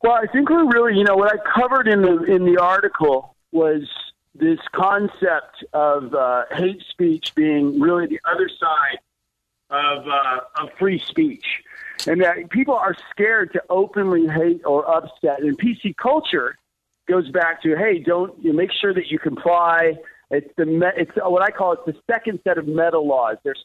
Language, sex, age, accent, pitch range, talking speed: English, male, 50-69, American, 165-235 Hz, 180 wpm